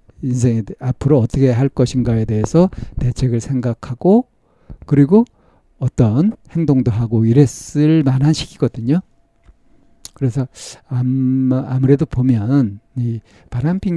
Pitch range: 115-140 Hz